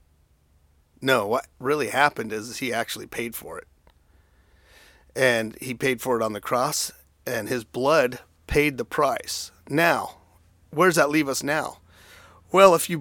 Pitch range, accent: 110-145 Hz, American